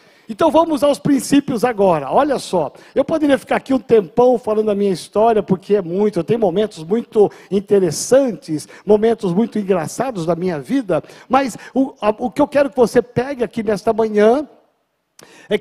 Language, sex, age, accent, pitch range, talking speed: Portuguese, male, 50-69, Brazilian, 215-280 Hz, 170 wpm